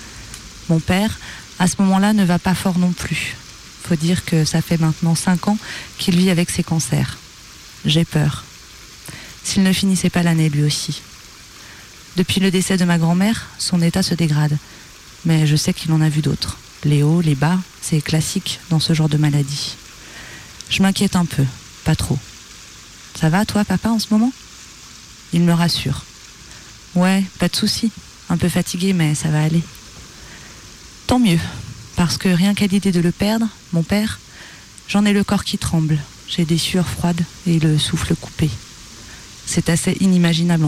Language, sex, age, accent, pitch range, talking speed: French, female, 30-49, French, 145-185 Hz, 180 wpm